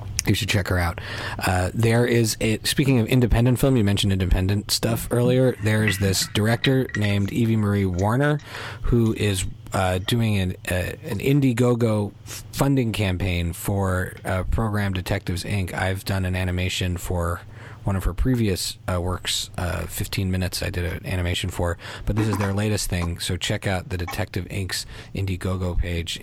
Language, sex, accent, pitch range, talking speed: English, male, American, 90-110 Hz, 165 wpm